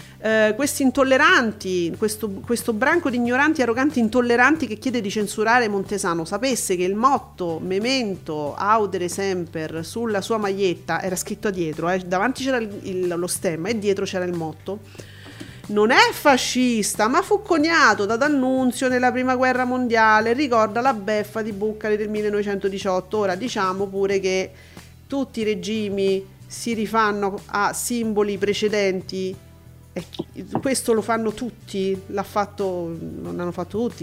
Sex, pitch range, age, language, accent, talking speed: female, 195-250 Hz, 40-59, Italian, native, 135 wpm